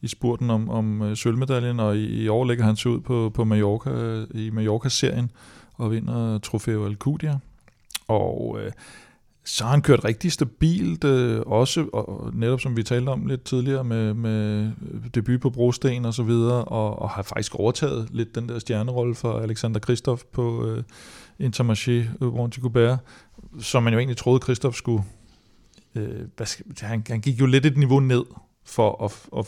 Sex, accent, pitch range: male, native, 110-125 Hz